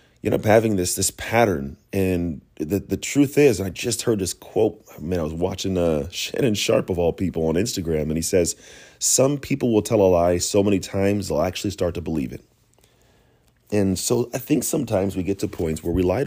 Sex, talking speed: male, 220 wpm